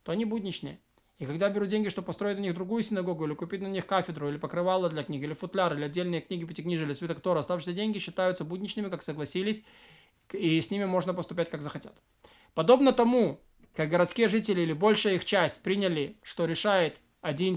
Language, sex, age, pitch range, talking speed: Russian, male, 20-39, 170-210 Hz, 190 wpm